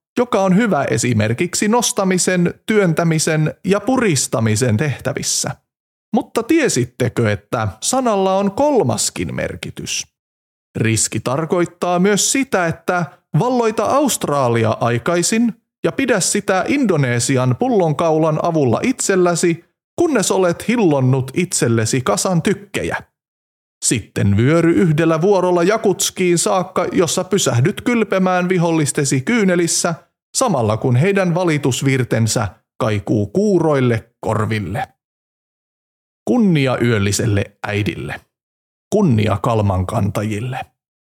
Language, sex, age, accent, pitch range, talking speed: Finnish, male, 30-49, native, 120-195 Hz, 90 wpm